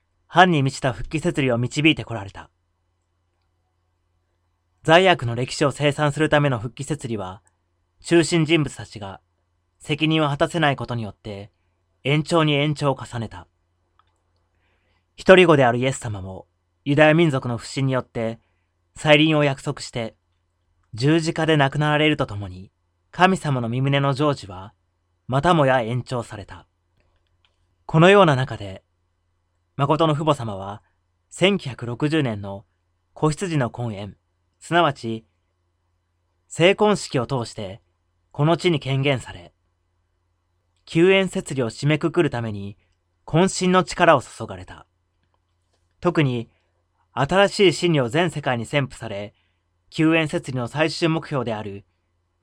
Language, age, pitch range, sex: Japanese, 30-49, 90-150 Hz, male